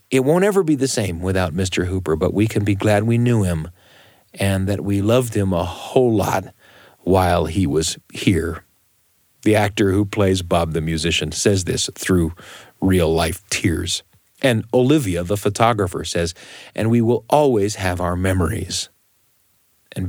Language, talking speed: English, 160 wpm